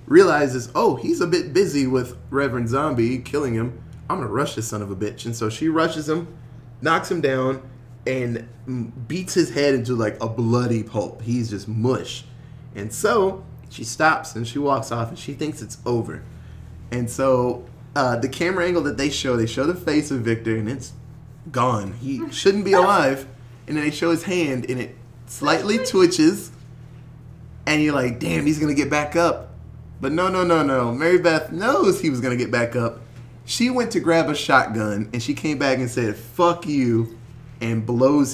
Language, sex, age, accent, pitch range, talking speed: English, male, 20-39, American, 120-155 Hz, 195 wpm